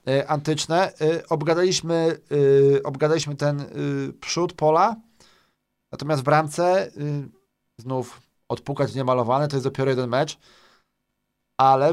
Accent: native